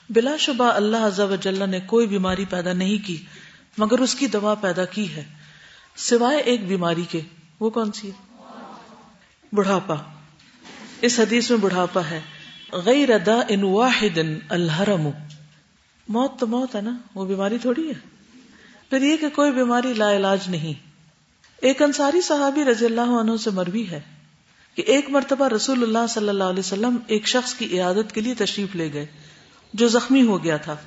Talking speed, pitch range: 165 wpm, 185-235 Hz